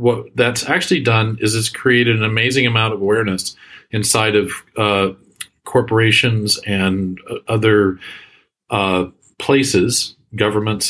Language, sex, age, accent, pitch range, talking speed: English, male, 40-59, American, 105-130 Hz, 120 wpm